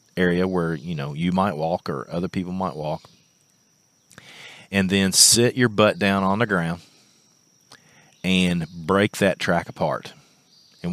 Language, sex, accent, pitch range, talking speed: English, male, American, 85-100 Hz, 150 wpm